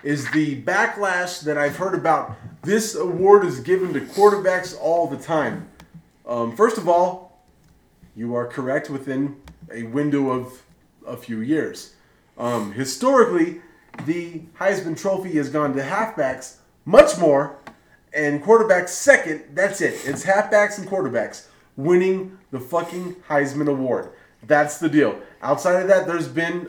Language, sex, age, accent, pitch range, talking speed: English, male, 30-49, American, 120-170 Hz, 140 wpm